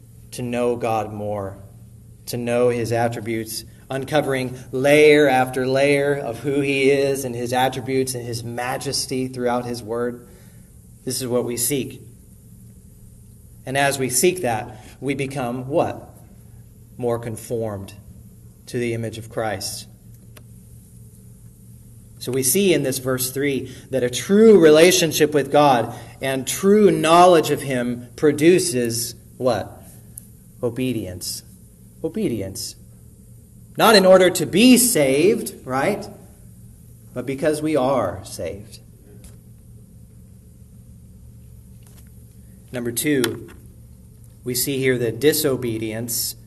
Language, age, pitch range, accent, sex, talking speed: English, 30-49, 110-140 Hz, American, male, 110 wpm